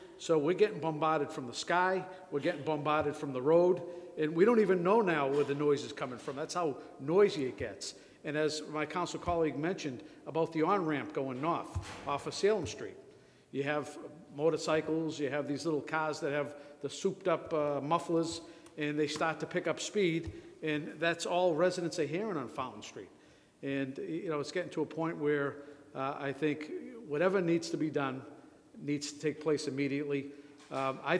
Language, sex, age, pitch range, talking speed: English, male, 50-69, 145-175 Hz, 190 wpm